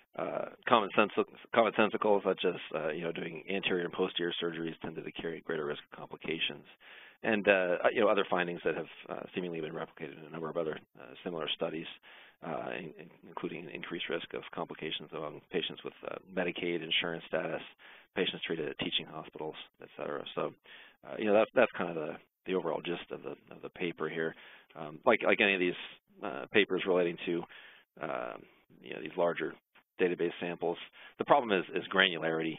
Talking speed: 190 wpm